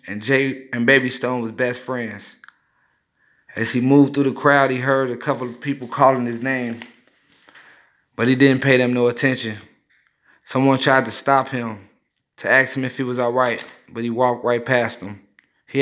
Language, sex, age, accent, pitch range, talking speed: English, male, 30-49, American, 120-135 Hz, 185 wpm